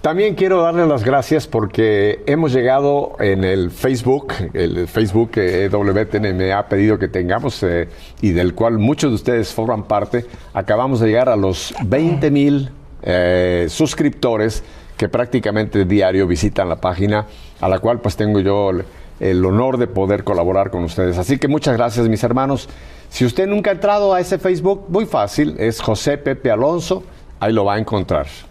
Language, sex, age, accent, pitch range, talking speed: Spanish, male, 50-69, Mexican, 95-135 Hz, 175 wpm